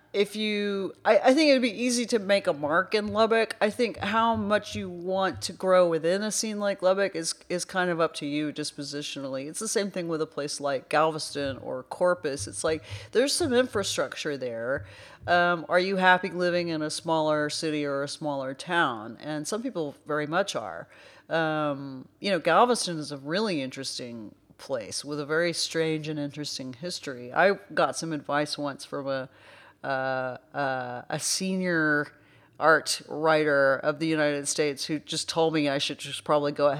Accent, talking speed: American, 190 wpm